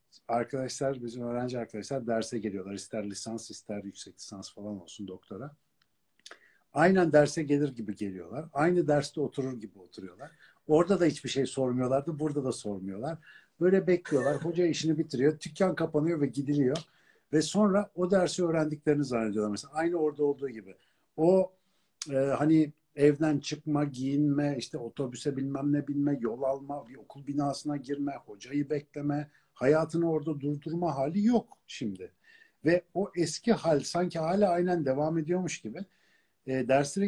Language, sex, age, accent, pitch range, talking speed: Turkish, male, 60-79, native, 130-170 Hz, 145 wpm